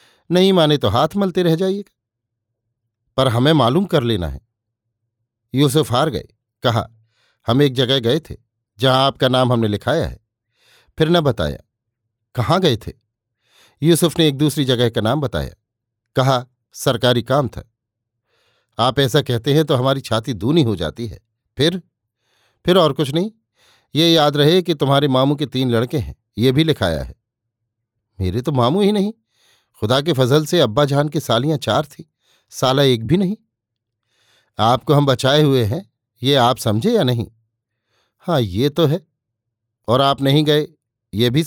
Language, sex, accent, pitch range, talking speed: Hindi, male, native, 115-150 Hz, 165 wpm